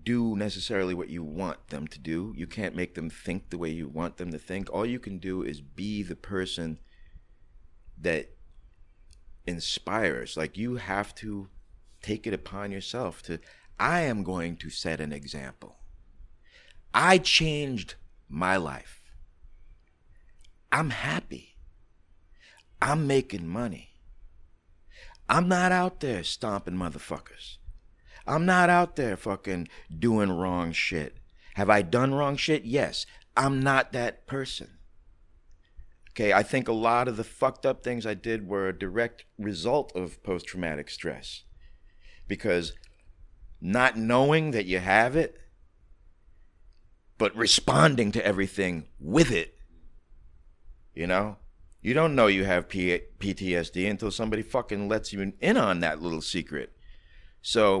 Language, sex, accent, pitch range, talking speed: English, male, American, 80-110 Hz, 135 wpm